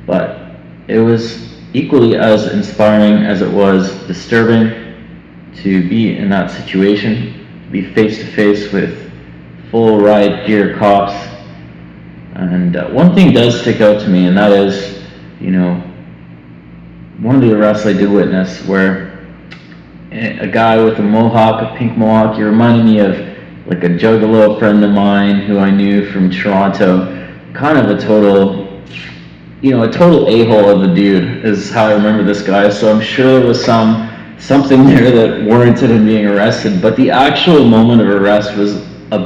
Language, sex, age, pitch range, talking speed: English, male, 30-49, 95-115 Hz, 165 wpm